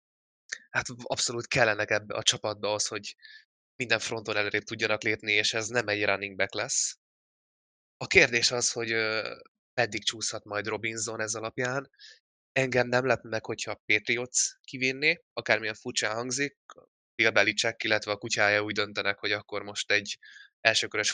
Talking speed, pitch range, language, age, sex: 150 wpm, 105-120 Hz, Hungarian, 20-39, male